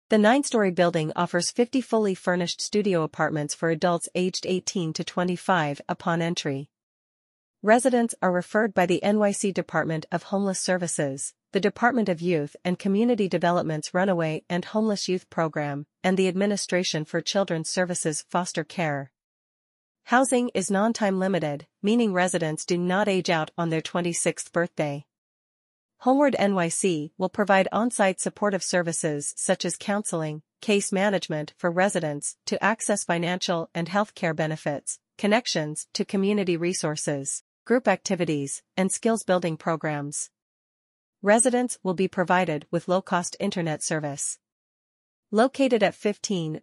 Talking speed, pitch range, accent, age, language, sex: 135 wpm, 165-200 Hz, American, 40-59, English, female